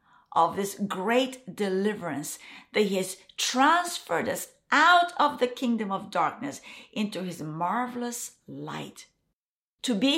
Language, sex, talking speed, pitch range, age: English, female, 125 wpm, 195-270 Hz, 50-69